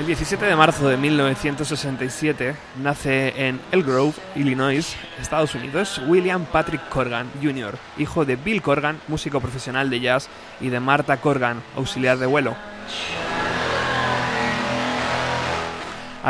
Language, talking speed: Spanish, 120 wpm